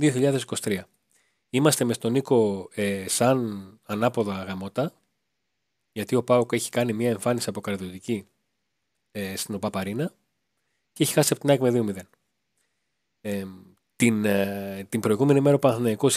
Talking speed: 135 wpm